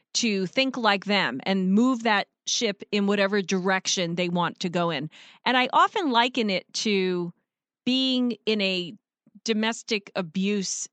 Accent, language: American, English